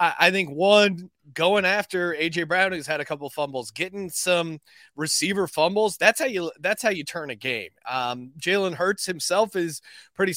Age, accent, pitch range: 30-49, American, 155-195 Hz